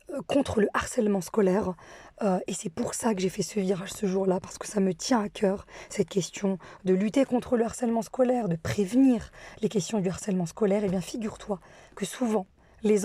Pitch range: 190-235 Hz